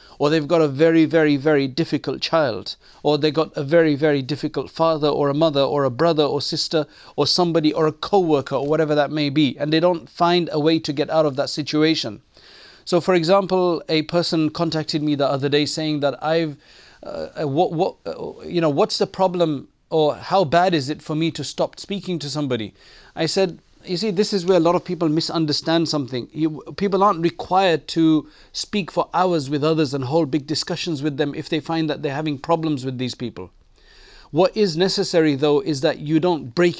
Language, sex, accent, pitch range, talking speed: English, male, South African, 145-170 Hz, 205 wpm